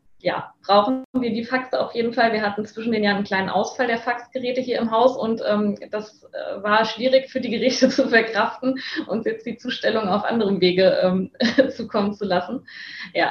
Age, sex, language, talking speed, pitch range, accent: 20-39, female, German, 195 wpm, 195-225 Hz, German